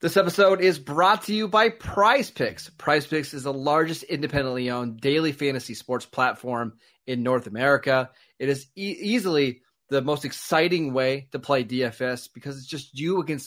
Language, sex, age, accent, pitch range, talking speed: English, male, 30-49, American, 125-155 Hz, 175 wpm